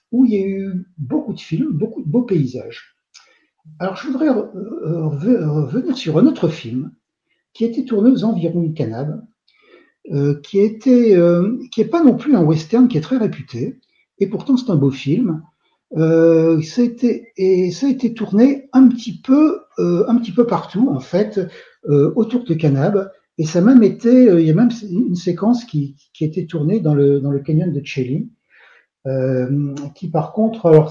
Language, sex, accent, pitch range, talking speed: French, male, French, 150-225 Hz, 190 wpm